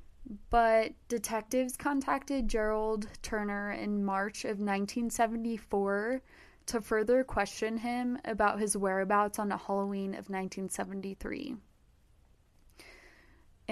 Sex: female